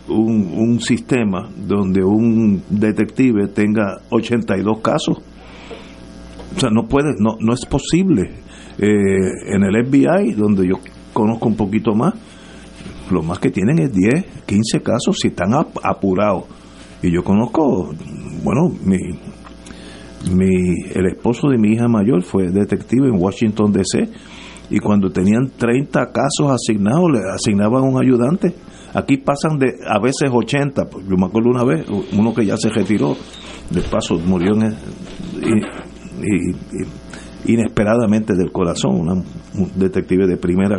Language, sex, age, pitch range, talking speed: Spanish, male, 50-69, 95-125 Hz, 145 wpm